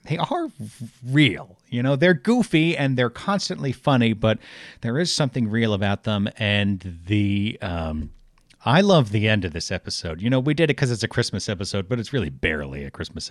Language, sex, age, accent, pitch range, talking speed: English, male, 40-59, American, 85-125 Hz, 200 wpm